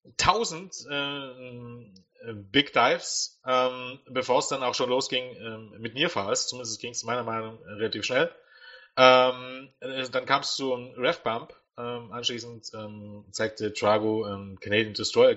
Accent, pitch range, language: German, 105-125 Hz, German